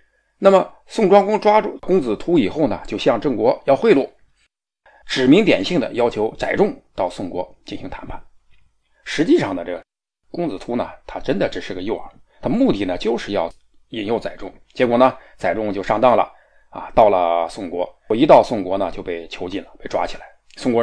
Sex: male